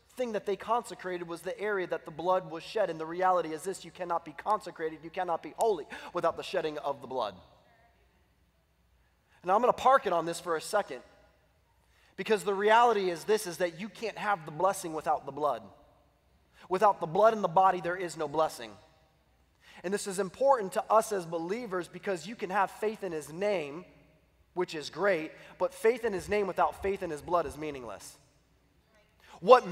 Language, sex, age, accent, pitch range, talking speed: English, male, 20-39, American, 180-255 Hz, 200 wpm